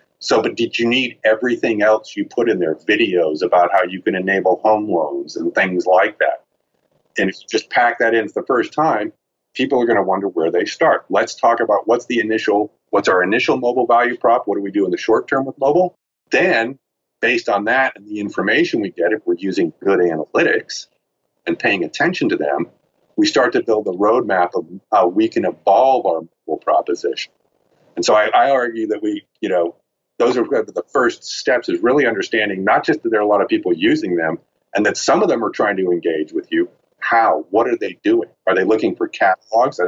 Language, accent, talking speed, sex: English, American, 220 wpm, male